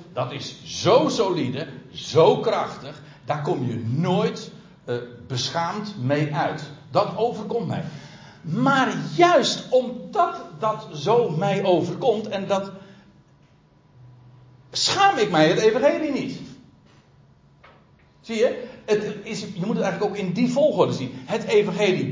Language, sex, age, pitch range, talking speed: Dutch, male, 60-79, 145-235 Hz, 130 wpm